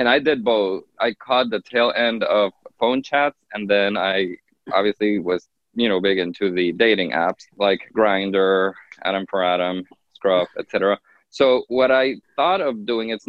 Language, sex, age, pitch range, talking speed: English, male, 20-39, 100-130 Hz, 170 wpm